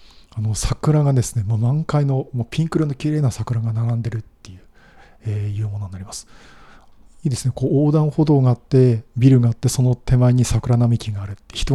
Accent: native